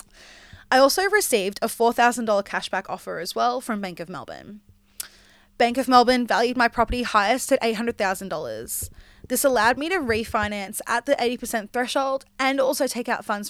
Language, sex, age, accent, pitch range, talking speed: English, female, 20-39, Australian, 200-255 Hz, 160 wpm